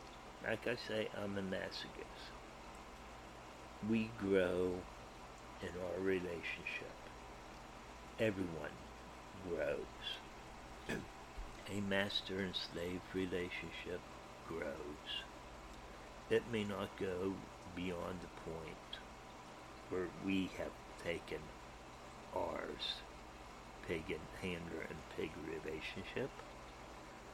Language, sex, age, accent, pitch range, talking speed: English, male, 60-79, American, 65-100 Hz, 80 wpm